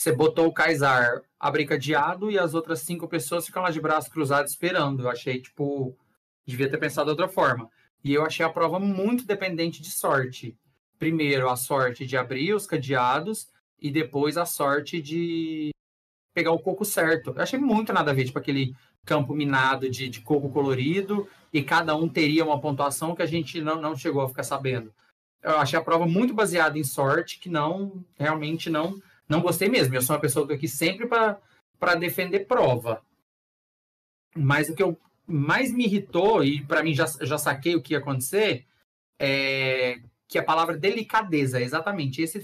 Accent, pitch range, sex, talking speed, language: Brazilian, 140-175 Hz, male, 180 wpm, Portuguese